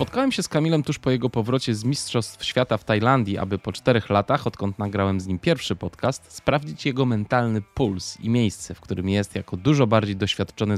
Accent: native